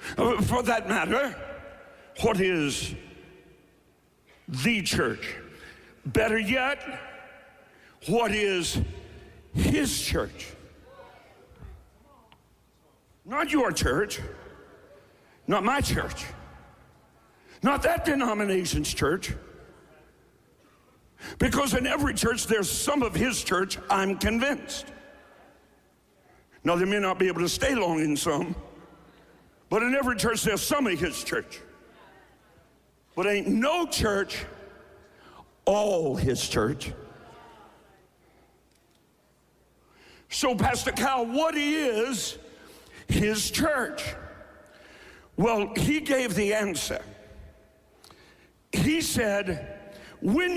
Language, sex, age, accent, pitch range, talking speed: English, male, 60-79, American, 190-270 Hz, 90 wpm